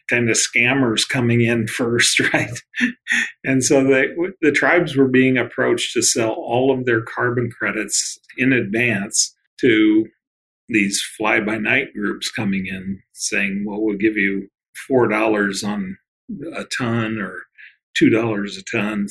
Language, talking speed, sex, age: English, 130 wpm, male, 40-59